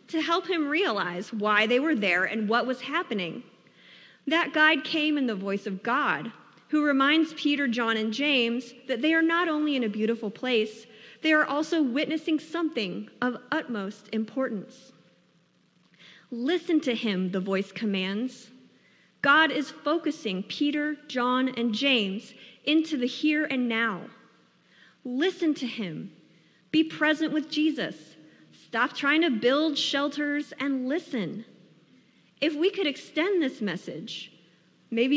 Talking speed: 140 wpm